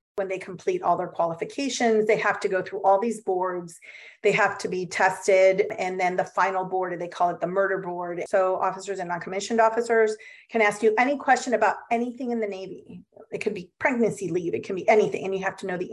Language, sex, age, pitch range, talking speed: English, female, 30-49, 185-215 Hz, 230 wpm